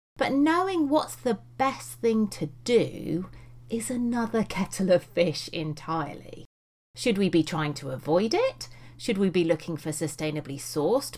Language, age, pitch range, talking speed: English, 40-59, 155-215 Hz, 150 wpm